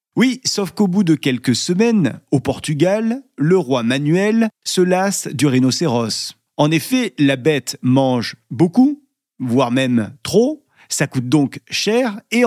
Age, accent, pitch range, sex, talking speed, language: 40-59, French, 130-195 Hz, male, 145 wpm, French